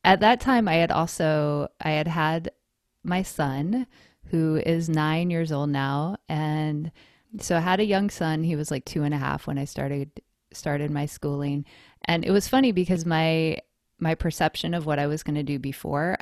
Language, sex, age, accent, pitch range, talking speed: English, female, 20-39, American, 145-170 Hz, 195 wpm